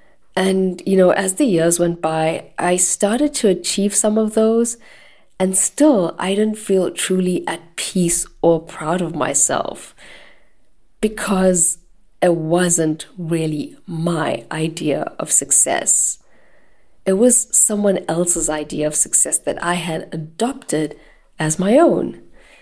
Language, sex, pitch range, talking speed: English, female, 160-215 Hz, 130 wpm